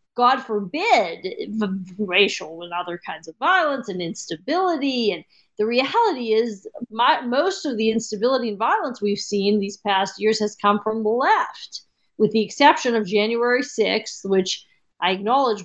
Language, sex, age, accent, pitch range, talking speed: English, female, 40-59, American, 200-255 Hz, 150 wpm